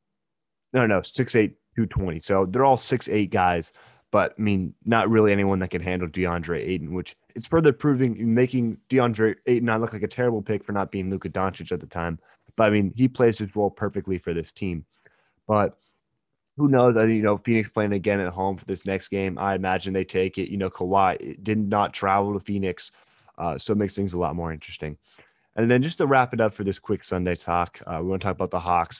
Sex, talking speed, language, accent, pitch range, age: male, 230 wpm, English, American, 95-110 Hz, 20-39